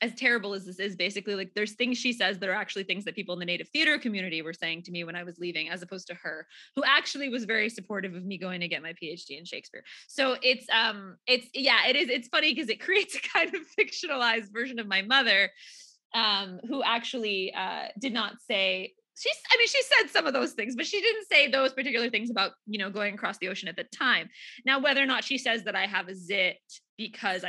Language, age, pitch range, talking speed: English, 20-39, 195-255 Hz, 245 wpm